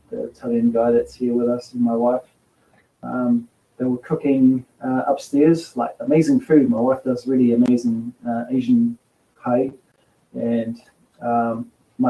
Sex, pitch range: male, 120-145 Hz